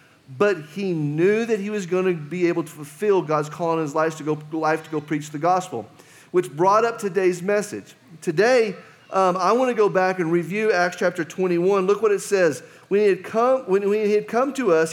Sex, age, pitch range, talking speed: male, 40-59, 165-215 Hz, 225 wpm